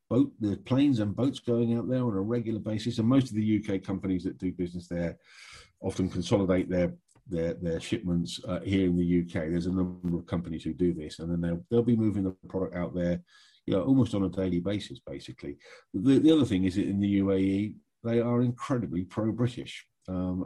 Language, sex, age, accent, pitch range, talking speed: English, male, 50-69, British, 85-105 Hz, 215 wpm